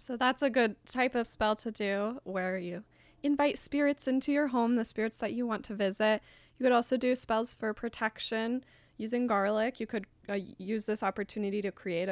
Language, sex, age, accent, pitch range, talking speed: English, female, 10-29, American, 180-215 Hz, 200 wpm